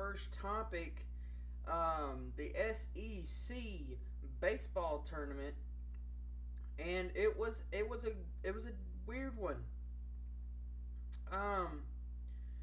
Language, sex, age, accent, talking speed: English, male, 20-39, American, 90 wpm